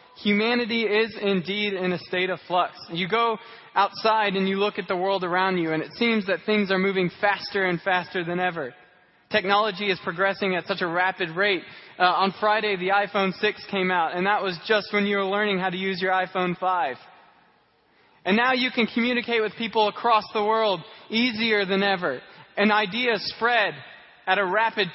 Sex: male